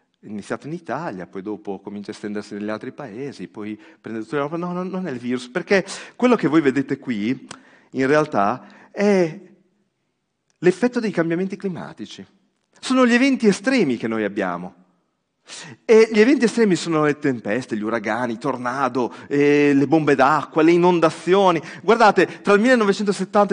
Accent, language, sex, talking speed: native, Italian, male, 160 wpm